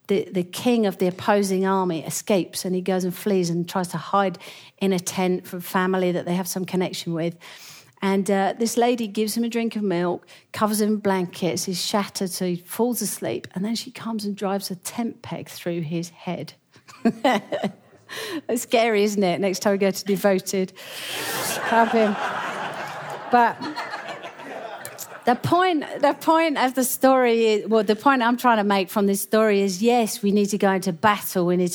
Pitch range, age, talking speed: 180-215 Hz, 40-59, 190 wpm